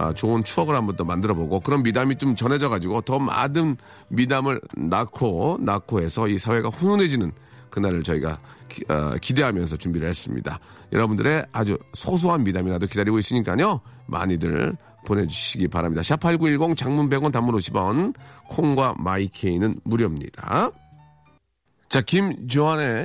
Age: 40-59